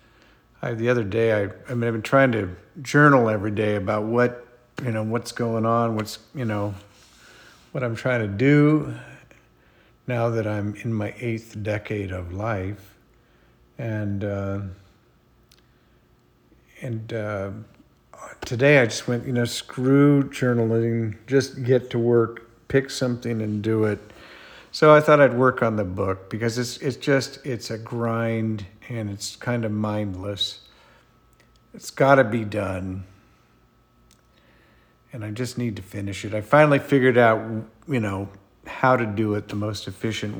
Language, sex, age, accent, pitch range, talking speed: English, male, 50-69, American, 105-130 Hz, 155 wpm